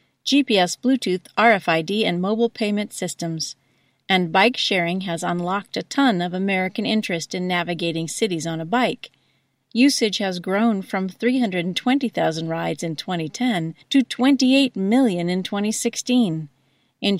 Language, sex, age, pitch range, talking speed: English, female, 40-59, 170-230 Hz, 130 wpm